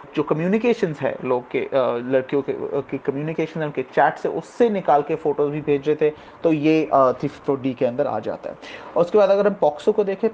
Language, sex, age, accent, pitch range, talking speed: Hindi, male, 30-49, native, 145-200 Hz, 210 wpm